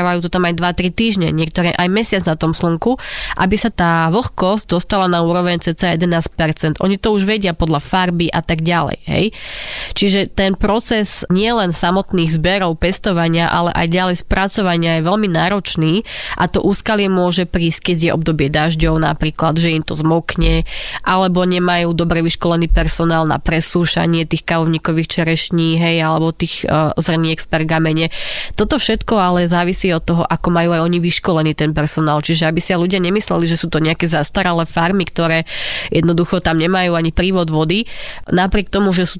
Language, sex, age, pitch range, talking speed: Slovak, female, 20-39, 165-185 Hz, 170 wpm